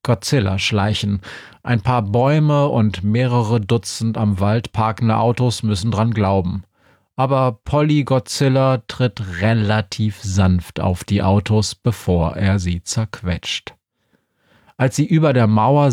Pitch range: 100-125 Hz